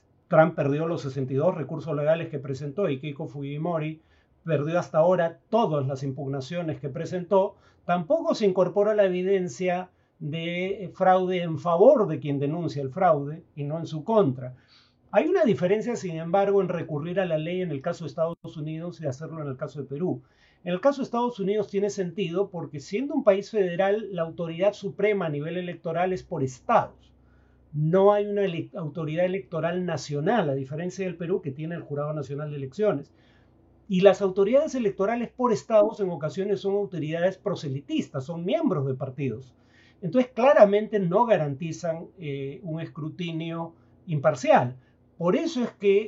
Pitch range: 145-195 Hz